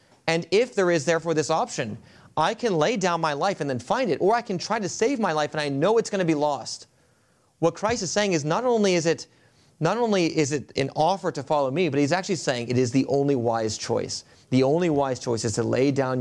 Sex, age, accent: male, 30-49, American